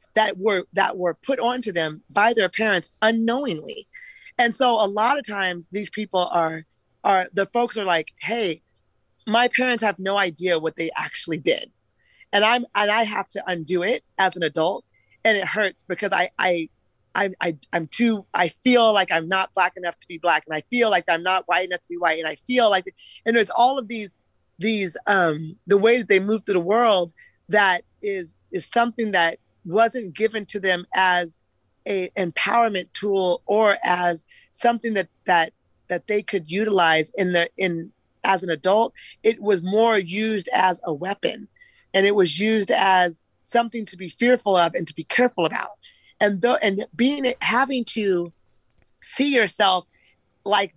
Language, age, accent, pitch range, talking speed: English, 30-49, American, 175-225 Hz, 180 wpm